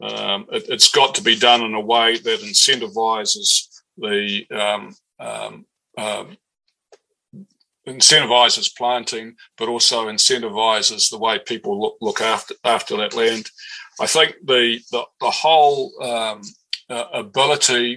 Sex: male